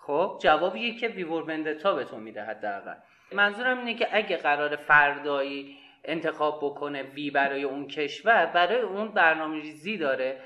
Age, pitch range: 30-49, 140-225 Hz